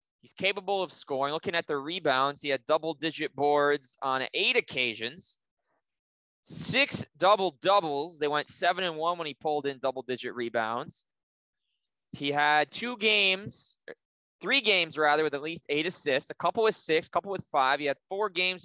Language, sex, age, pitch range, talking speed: English, male, 20-39, 130-165 Hz, 165 wpm